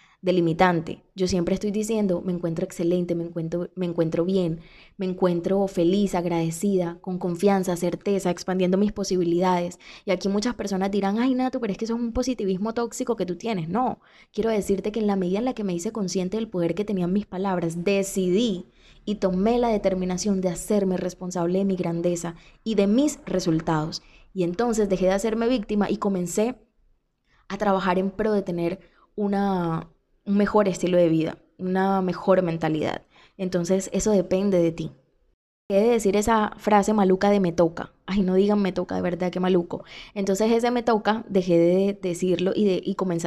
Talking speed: 185 wpm